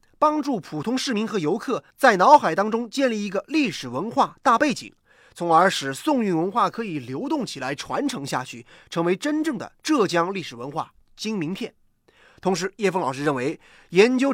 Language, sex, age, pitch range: Chinese, male, 30-49, 175-275 Hz